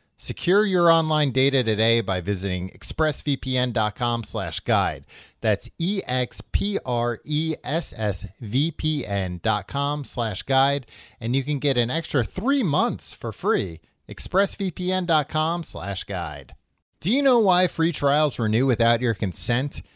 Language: English